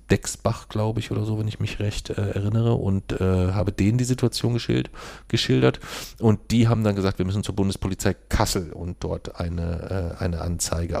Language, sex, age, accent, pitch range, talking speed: German, male, 40-59, German, 90-100 Hz, 190 wpm